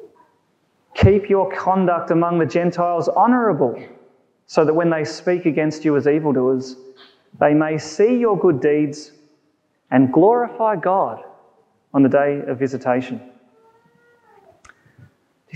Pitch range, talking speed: 135-205 Hz, 120 wpm